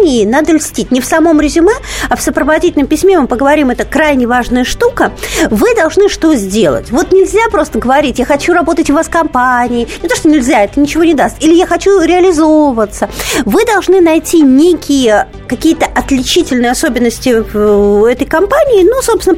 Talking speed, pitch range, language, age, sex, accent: 165 wpm, 245-340 Hz, Russian, 50-69, female, native